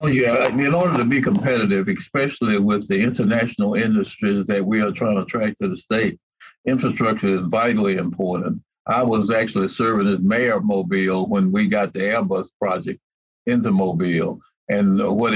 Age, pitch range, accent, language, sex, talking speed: 60-79, 100-135 Hz, American, English, male, 170 wpm